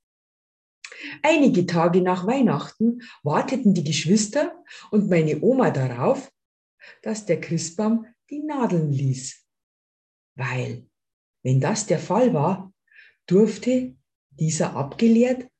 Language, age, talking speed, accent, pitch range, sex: German, 50-69, 100 wpm, German, 140-210 Hz, female